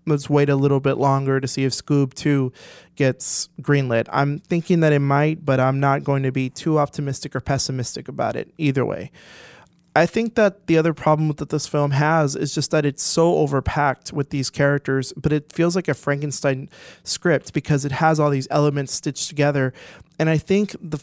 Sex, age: male, 20-39